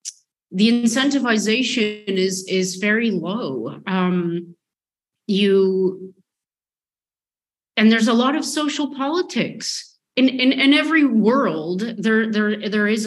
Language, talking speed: English, 110 wpm